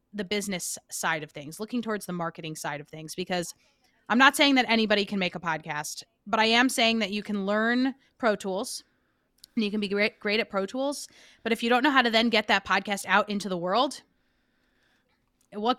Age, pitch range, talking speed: 20-39, 175-230 Hz, 215 wpm